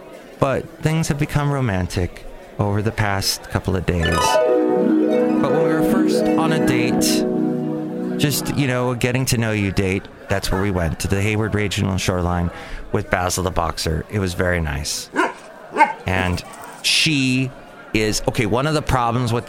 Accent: American